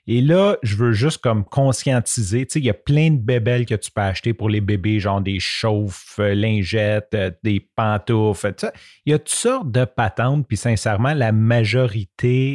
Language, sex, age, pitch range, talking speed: French, male, 30-49, 110-130 Hz, 195 wpm